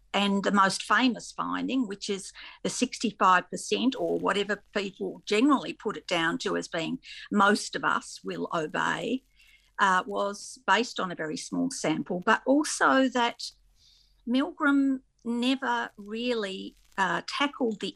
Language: English